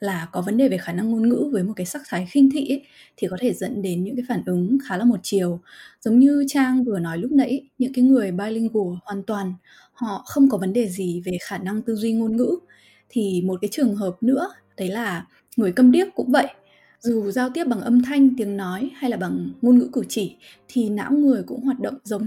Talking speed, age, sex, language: 245 wpm, 20-39, female, Vietnamese